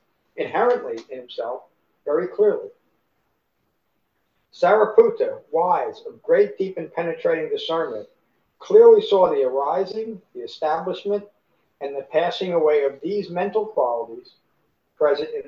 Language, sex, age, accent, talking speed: English, male, 60-79, American, 110 wpm